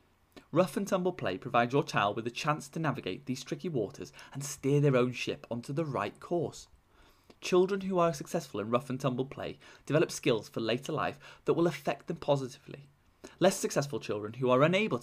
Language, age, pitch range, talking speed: English, 20-39, 120-160 Hz, 195 wpm